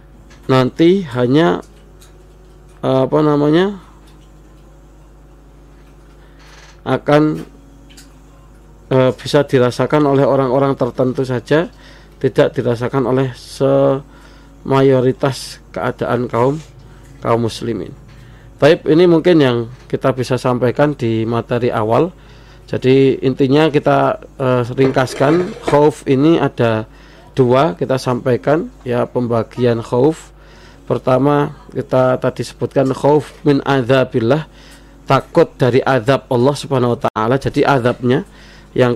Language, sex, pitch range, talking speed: Indonesian, male, 125-150 Hz, 95 wpm